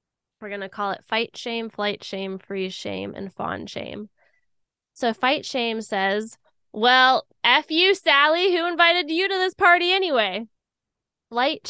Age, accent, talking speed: 10-29, American, 155 wpm